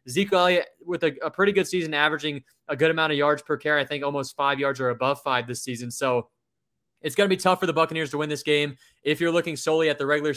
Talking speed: 265 wpm